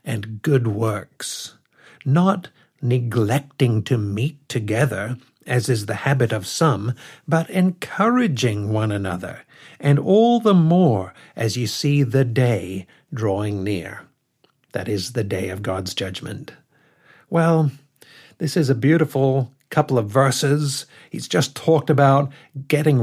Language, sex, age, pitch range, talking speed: English, male, 60-79, 115-150 Hz, 130 wpm